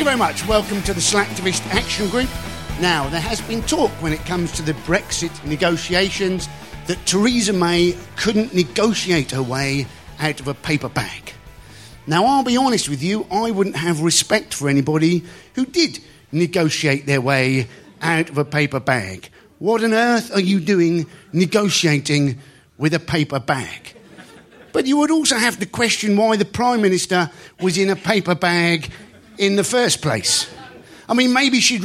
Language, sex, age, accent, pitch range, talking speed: English, male, 50-69, British, 160-215 Hz, 170 wpm